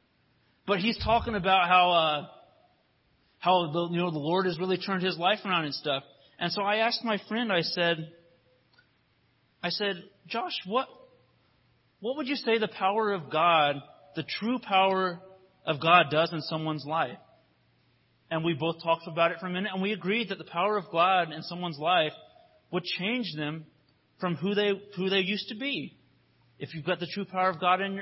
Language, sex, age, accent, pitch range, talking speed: English, male, 30-49, American, 155-200 Hz, 190 wpm